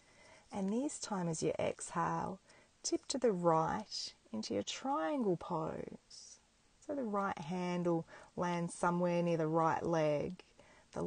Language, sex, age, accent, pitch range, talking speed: English, female, 30-49, Australian, 165-190 Hz, 135 wpm